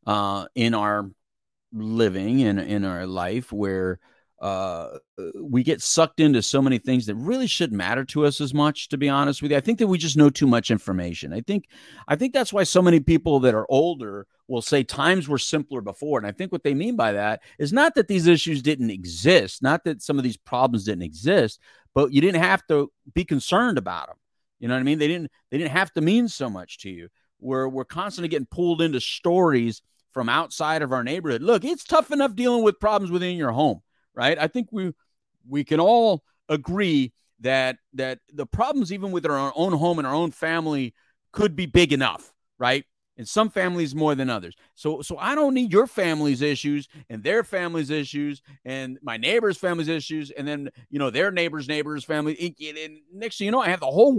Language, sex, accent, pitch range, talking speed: English, male, American, 130-180 Hz, 215 wpm